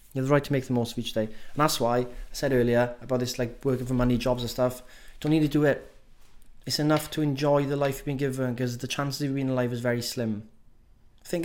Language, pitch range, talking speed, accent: English, 115-150 Hz, 275 wpm, British